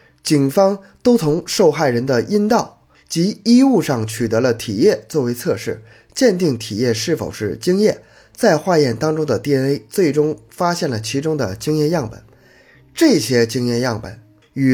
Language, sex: Chinese, male